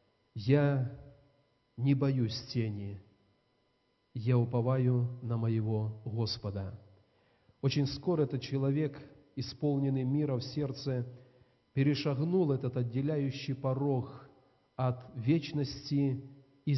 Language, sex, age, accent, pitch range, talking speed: Russian, male, 40-59, native, 125-150 Hz, 85 wpm